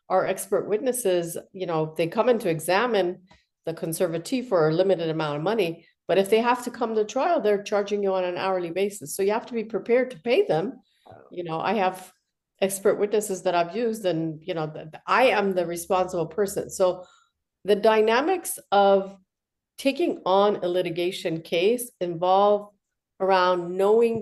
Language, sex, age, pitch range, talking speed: English, female, 50-69, 180-230 Hz, 175 wpm